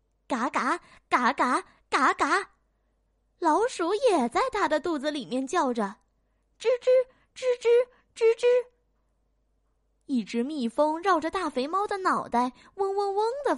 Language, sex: Chinese, female